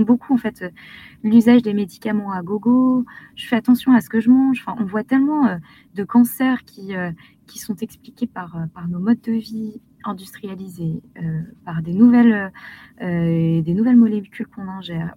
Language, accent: French, French